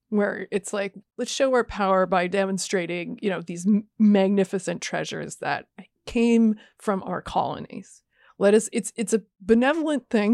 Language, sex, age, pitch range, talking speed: English, female, 30-49, 190-230 Hz, 155 wpm